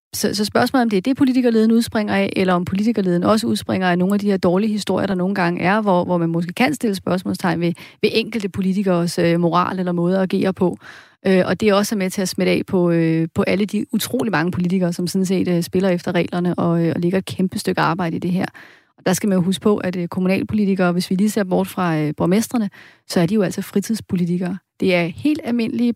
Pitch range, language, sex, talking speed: 175-215 Hz, Danish, female, 230 wpm